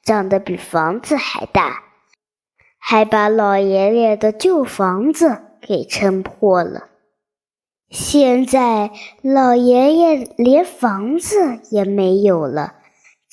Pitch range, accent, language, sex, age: 200-290 Hz, native, Chinese, male, 20-39